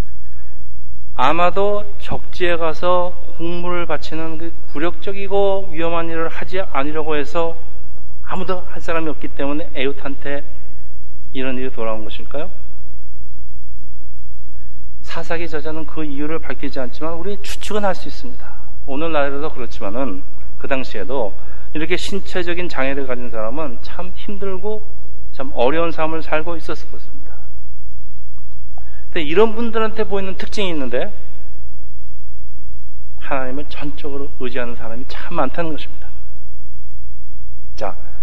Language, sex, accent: Korean, male, native